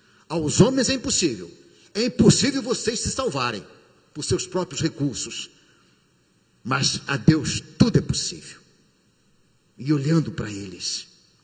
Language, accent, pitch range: Portuguese, Brazilian, 110-175 Hz